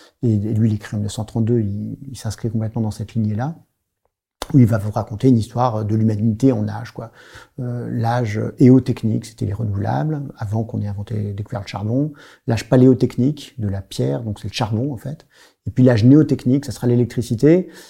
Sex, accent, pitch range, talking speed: male, French, 110-135 Hz, 190 wpm